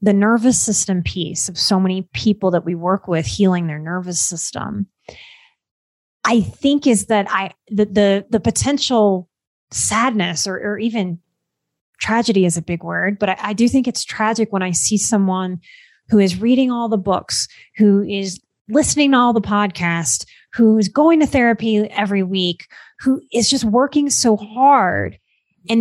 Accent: American